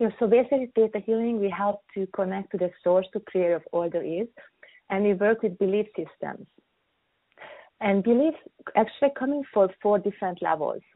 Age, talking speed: 30-49, 165 wpm